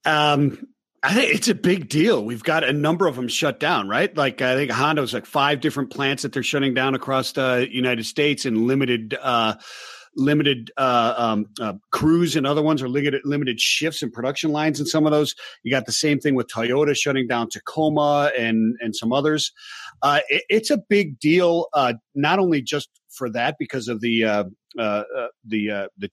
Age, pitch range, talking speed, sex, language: 40-59, 115-150 Hz, 200 wpm, male, English